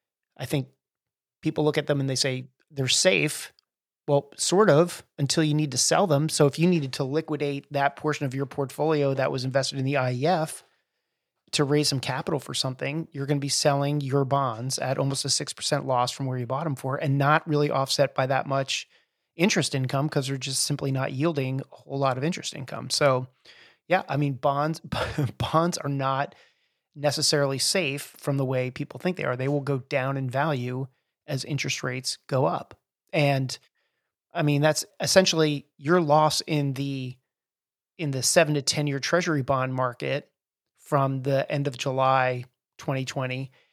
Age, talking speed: 30-49, 185 wpm